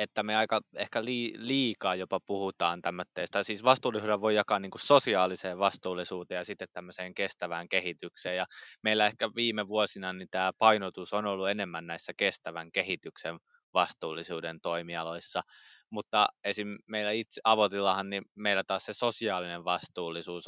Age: 20-39